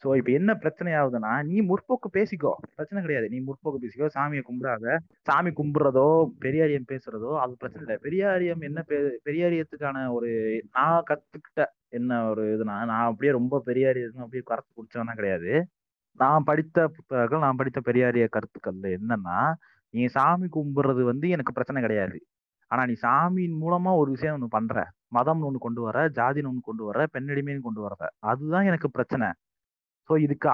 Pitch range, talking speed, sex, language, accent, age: 120-160 Hz, 150 wpm, male, Tamil, native, 20-39